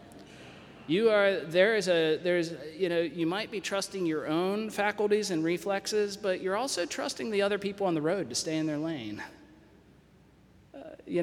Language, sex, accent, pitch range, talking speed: English, male, American, 155-190 Hz, 180 wpm